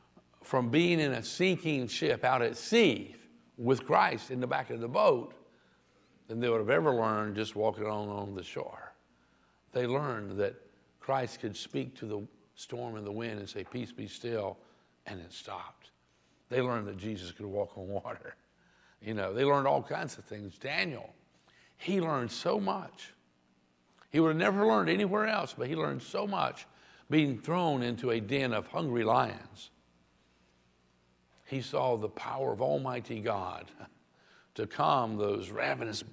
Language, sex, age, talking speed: English, male, 60-79, 165 wpm